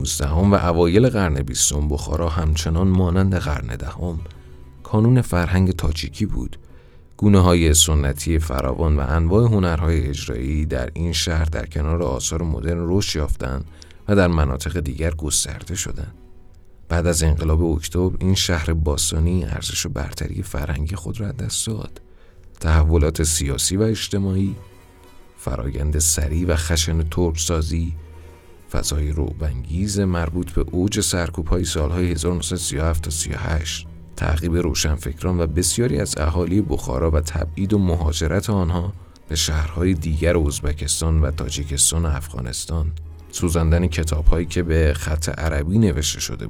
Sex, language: male, Persian